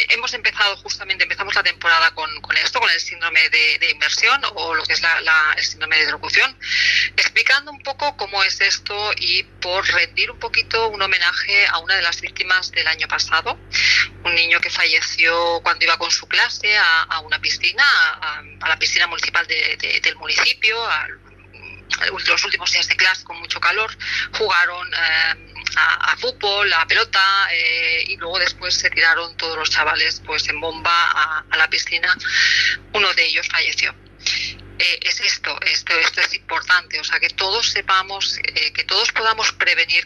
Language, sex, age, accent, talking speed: Spanish, female, 30-49, Spanish, 185 wpm